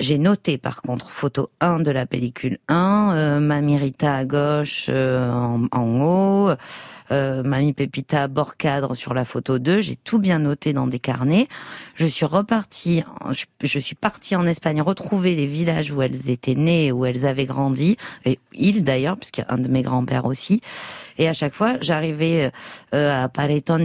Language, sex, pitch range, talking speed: French, female, 135-165 Hz, 185 wpm